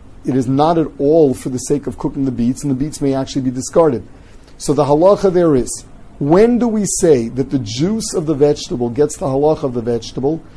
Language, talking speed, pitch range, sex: English, 225 wpm, 130-160 Hz, male